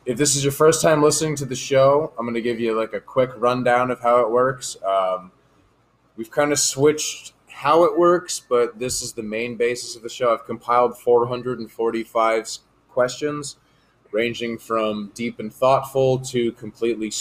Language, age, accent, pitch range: English, 20-39, American, 110-130 Hz